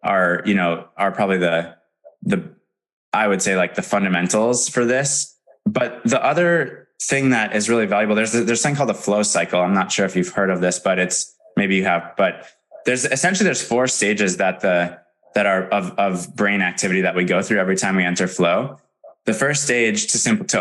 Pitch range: 90-120 Hz